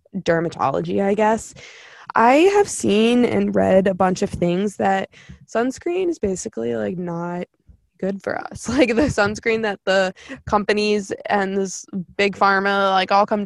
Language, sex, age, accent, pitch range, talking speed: English, female, 20-39, American, 185-245 Hz, 150 wpm